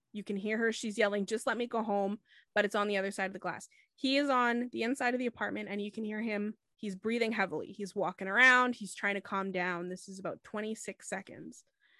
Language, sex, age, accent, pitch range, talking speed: English, female, 20-39, American, 200-250 Hz, 245 wpm